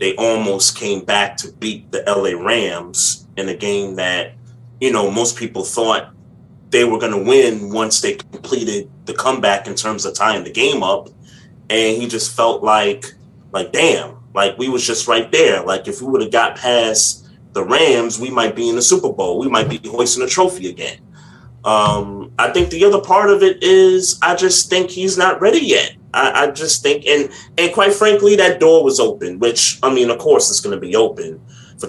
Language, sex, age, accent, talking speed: English, male, 30-49, American, 205 wpm